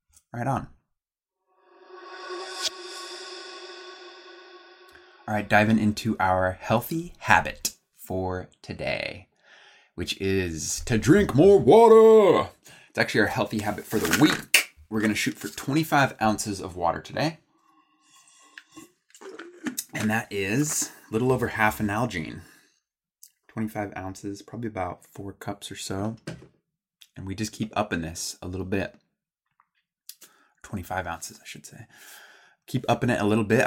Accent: American